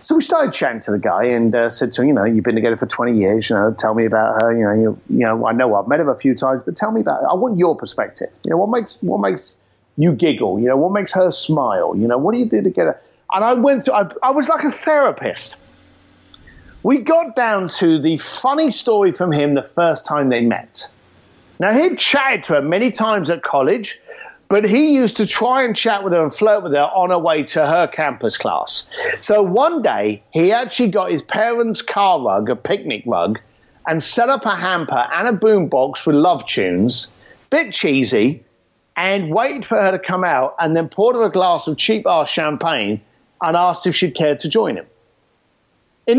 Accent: British